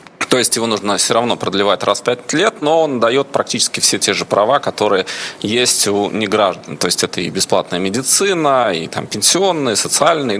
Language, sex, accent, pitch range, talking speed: Russian, male, native, 100-125 Hz, 190 wpm